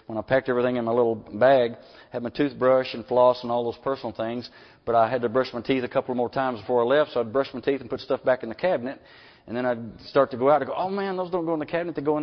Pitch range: 115-140 Hz